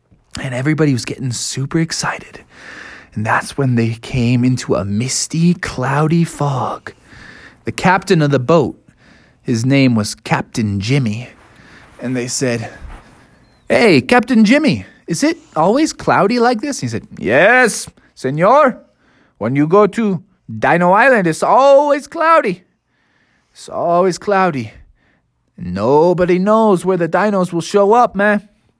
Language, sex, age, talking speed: English, male, 20-39, 135 wpm